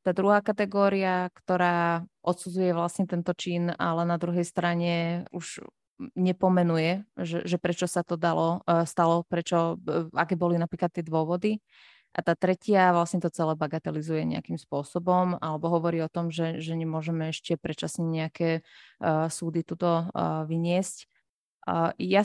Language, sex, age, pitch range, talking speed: Slovak, female, 20-39, 165-180 Hz, 135 wpm